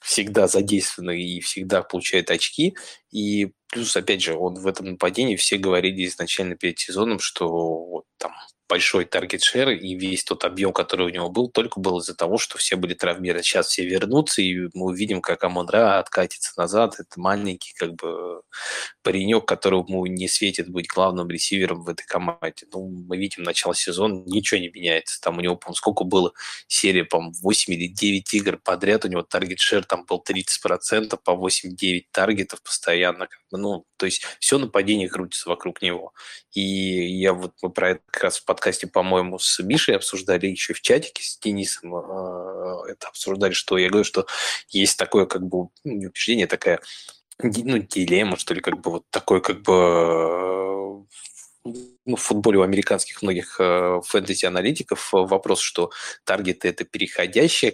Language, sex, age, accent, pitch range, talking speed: Russian, male, 20-39, native, 90-100 Hz, 165 wpm